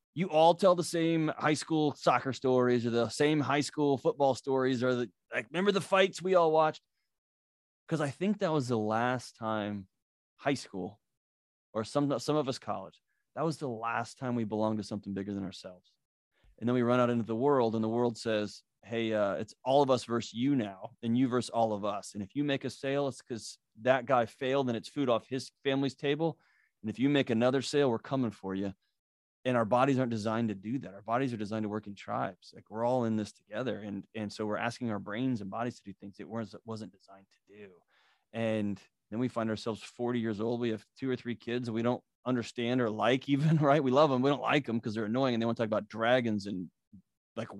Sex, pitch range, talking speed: male, 110-140 Hz, 240 wpm